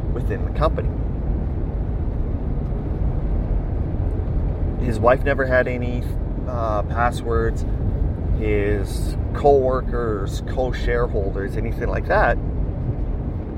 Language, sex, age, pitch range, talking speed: English, male, 30-49, 80-105 Hz, 70 wpm